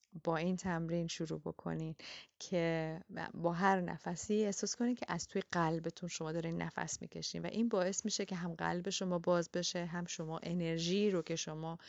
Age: 30-49